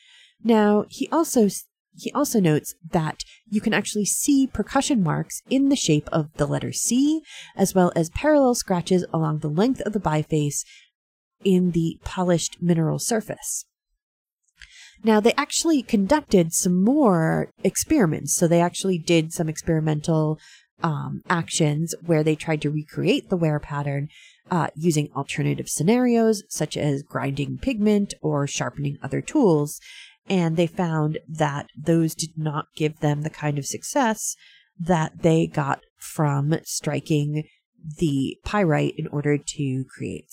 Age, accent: 30-49, American